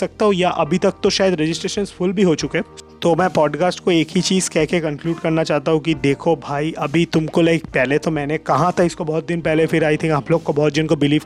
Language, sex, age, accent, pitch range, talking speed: Hindi, male, 30-49, native, 155-180 Hz, 250 wpm